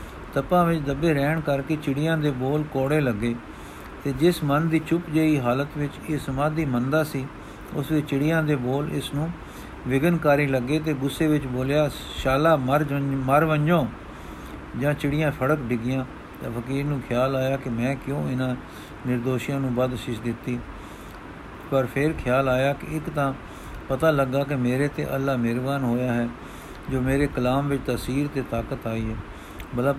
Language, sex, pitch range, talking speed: Punjabi, male, 125-150 Hz, 165 wpm